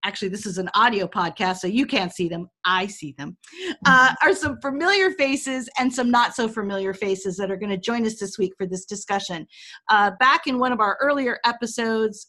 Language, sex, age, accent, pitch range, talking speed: English, female, 40-59, American, 205-265 Hz, 205 wpm